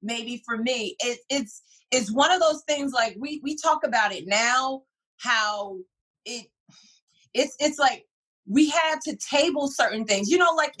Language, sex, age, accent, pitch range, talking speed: English, female, 30-49, American, 210-275 Hz, 165 wpm